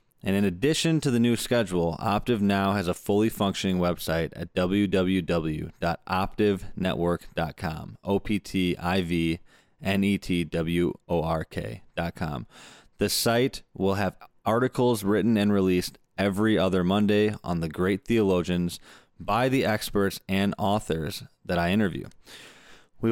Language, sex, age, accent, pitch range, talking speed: English, male, 20-39, American, 90-110 Hz, 105 wpm